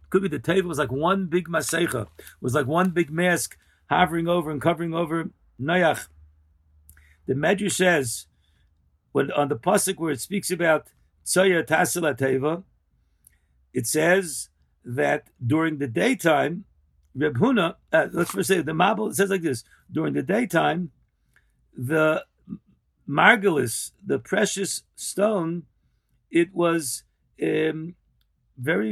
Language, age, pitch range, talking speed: English, 50-69, 130-180 Hz, 135 wpm